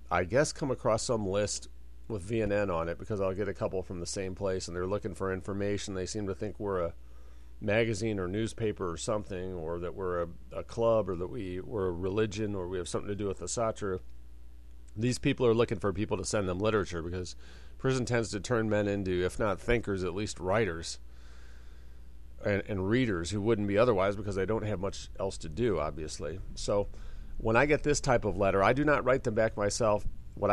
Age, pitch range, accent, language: 40-59, 85-110 Hz, American, English